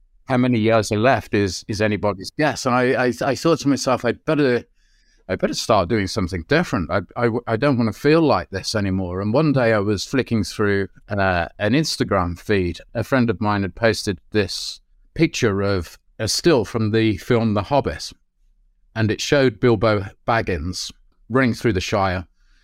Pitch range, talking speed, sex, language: 95-120 Hz, 185 wpm, male, English